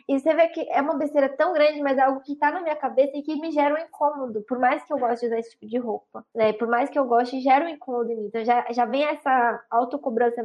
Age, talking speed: 10-29, 295 wpm